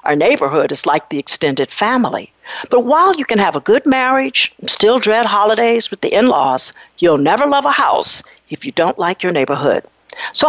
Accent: American